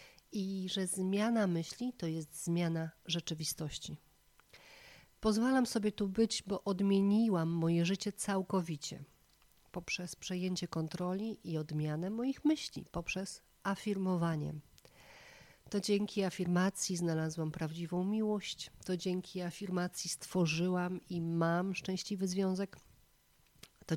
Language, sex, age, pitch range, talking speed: Polish, female, 40-59, 155-195 Hz, 105 wpm